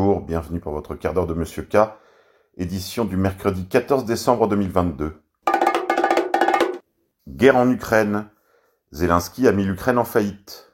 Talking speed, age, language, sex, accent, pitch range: 130 wpm, 40-59, French, male, French, 85-110 Hz